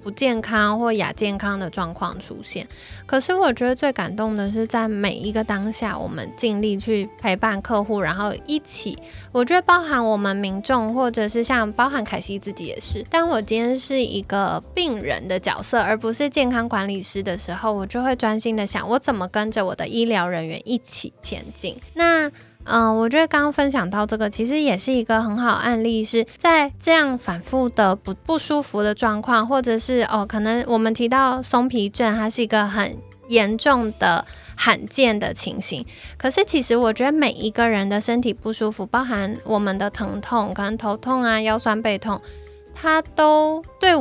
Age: 10-29